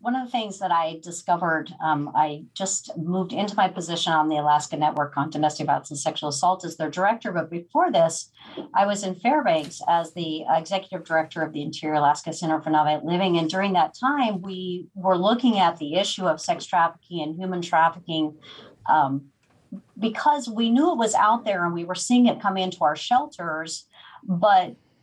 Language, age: English, 50-69